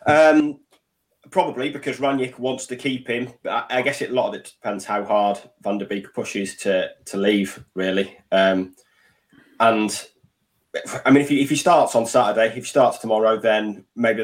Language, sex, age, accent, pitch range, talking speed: English, male, 20-39, British, 100-120 Hz, 185 wpm